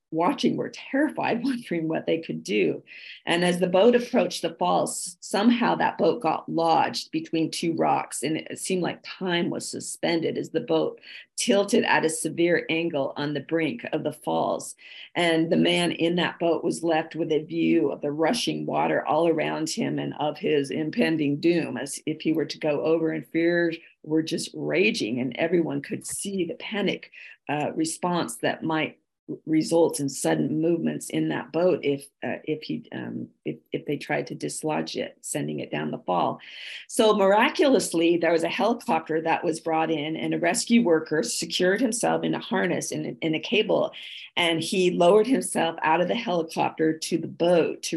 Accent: American